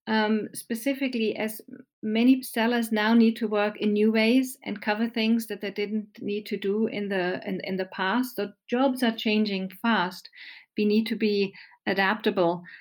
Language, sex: English, female